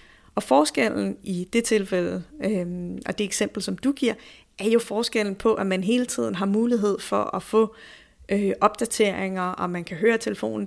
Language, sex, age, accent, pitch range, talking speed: Danish, female, 30-49, native, 185-230 Hz, 180 wpm